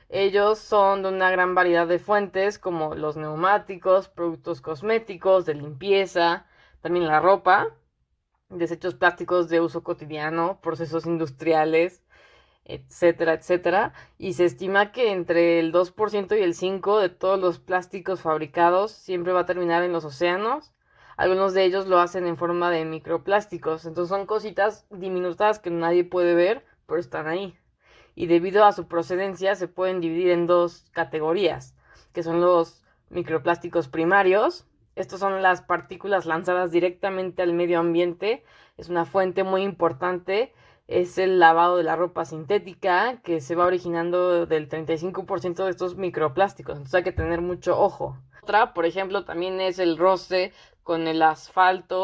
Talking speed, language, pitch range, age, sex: 150 wpm, English, 170-190 Hz, 20-39, female